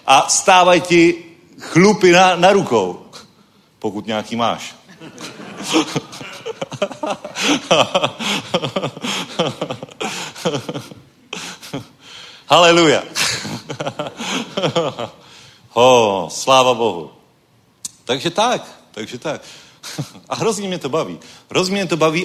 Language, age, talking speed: Czech, 40-59, 70 wpm